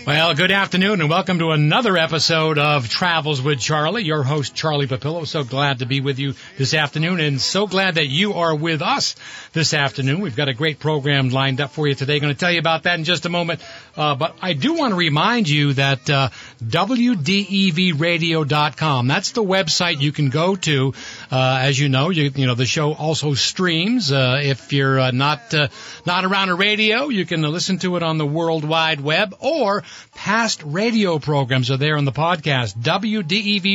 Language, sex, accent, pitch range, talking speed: English, male, American, 145-185 Hz, 200 wpm